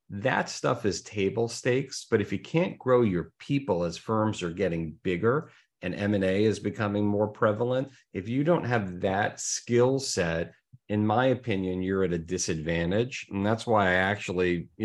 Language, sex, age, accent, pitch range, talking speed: English, male, 40-59, American, 90-110 Hz, 175 wpm